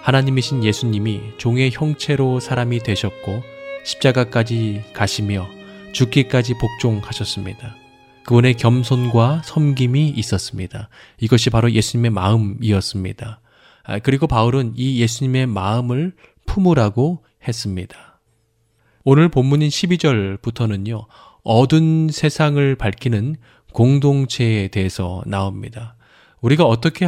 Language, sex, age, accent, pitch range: Korean, male, 20-39, native, 110-140 Hz